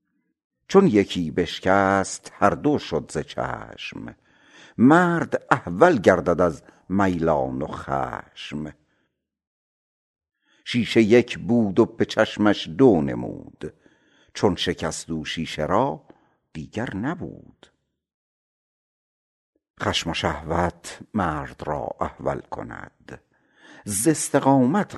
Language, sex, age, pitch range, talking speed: Persian, male, 60-79, 80-110 Hz, 95 wpm